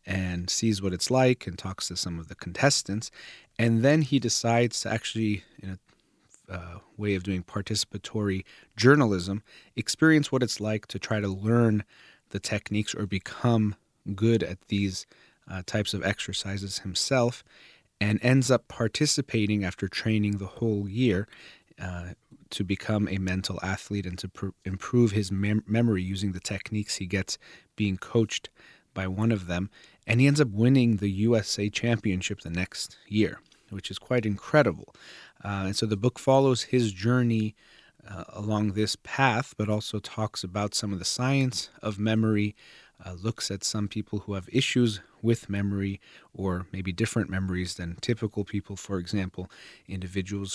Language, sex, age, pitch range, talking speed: English, male, 30-49, 95-115 Hz, 160 wpm